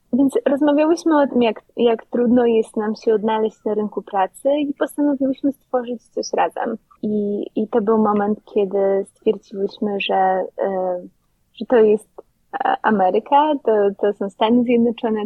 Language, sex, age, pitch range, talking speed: Polish, female, 20-39, 195-250 Hz, 140 wpm